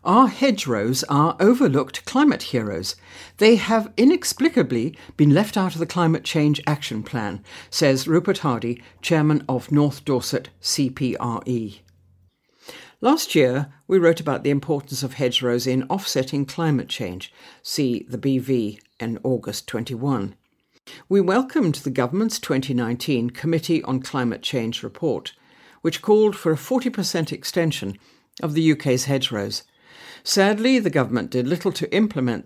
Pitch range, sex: 125-180 Hz, female